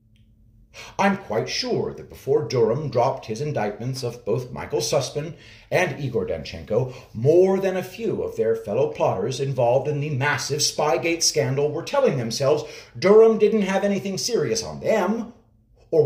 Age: 50-69